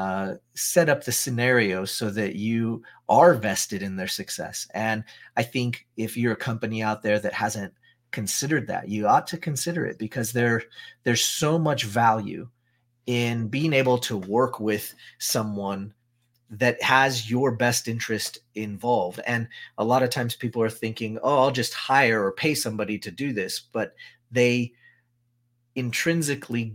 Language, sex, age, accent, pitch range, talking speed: English, male, 30-49, American, 110-130 Hz, 155 wpm